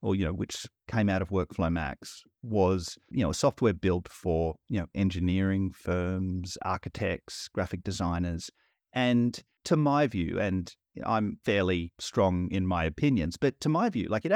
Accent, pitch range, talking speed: Australian, 90-115 Hz, 165 wpm